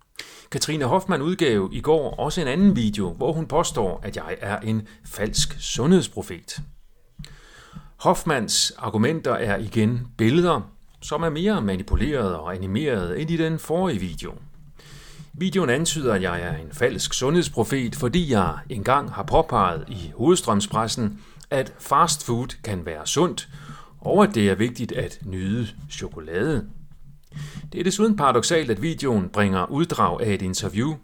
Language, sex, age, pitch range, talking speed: Danish, male, 40-59, 100-155 Hz, 145 wpm